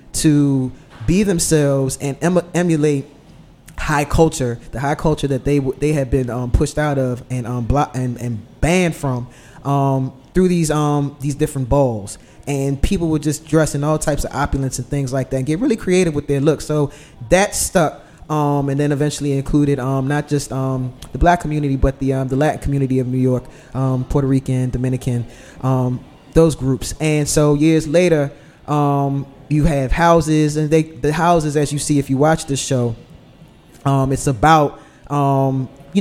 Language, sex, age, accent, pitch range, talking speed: English, male, 20-39, American, 130-155 Hz, 185 wpm